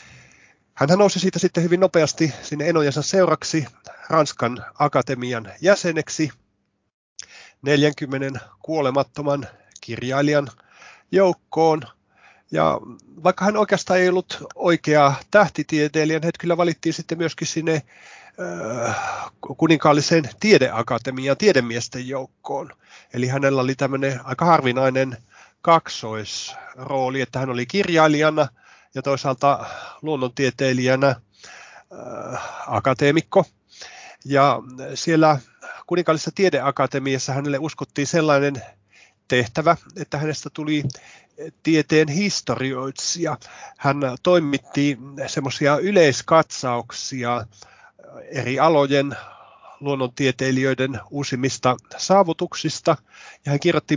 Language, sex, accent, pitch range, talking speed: Finnish, male, native, 130-160 Hz, 80 wpm